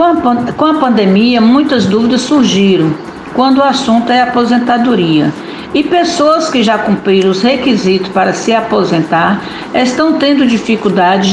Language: Portuguese